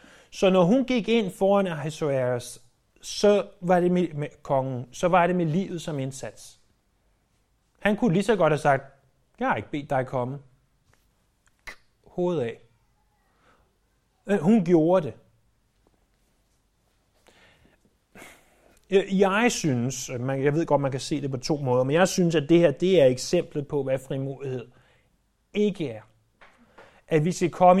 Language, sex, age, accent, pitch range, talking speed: Danish, male, 30-49, native, 135-195 Hz, 150 wpm